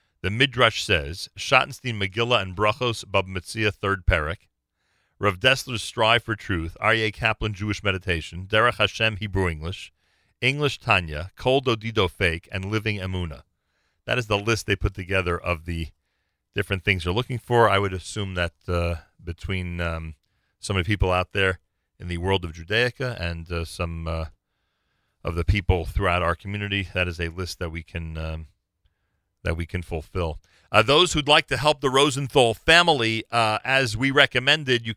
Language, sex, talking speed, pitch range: English, male, 175 wpm, 90-125 Hz